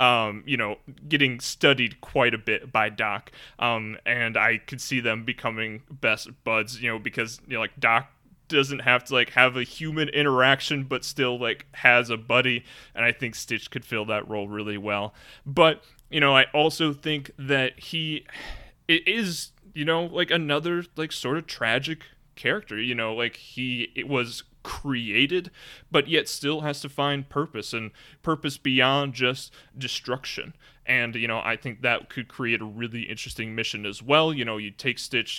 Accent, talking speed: American, 180 wpm